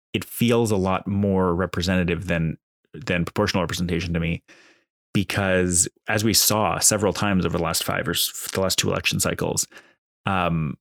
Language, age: English, 20-39